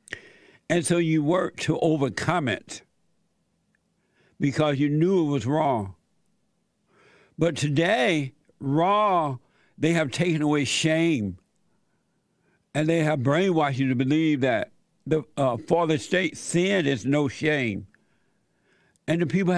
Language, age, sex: English, 60-79, male